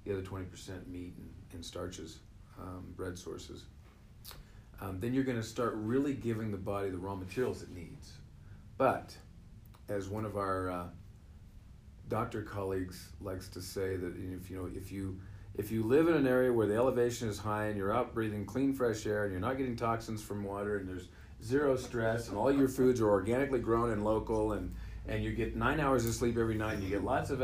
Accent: American